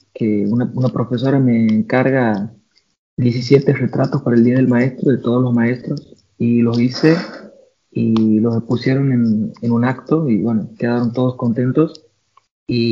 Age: 30-49